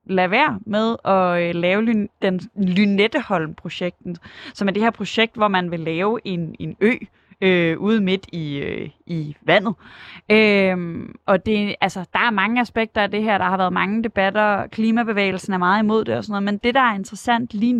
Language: Danish